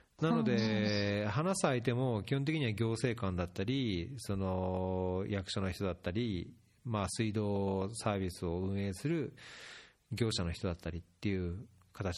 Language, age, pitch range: Japanese, 40-59, 95-135 Hz